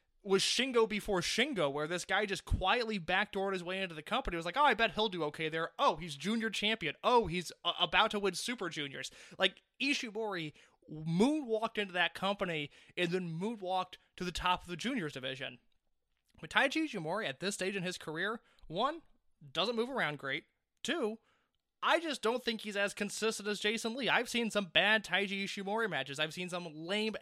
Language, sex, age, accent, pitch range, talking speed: English, male, 20-39, American, 160-215 Hz, 195 wpm